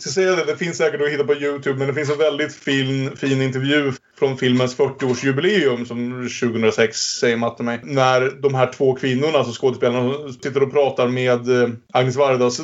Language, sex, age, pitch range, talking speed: Swedish, male, 30-49, 120-140 Hz, 180 wpm